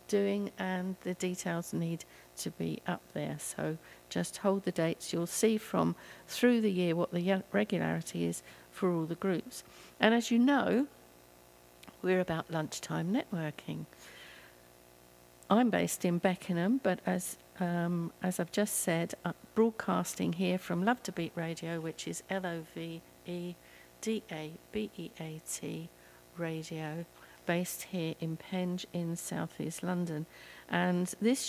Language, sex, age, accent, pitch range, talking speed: English, female, 50-69, British, 155-195 Hz, 130 wpm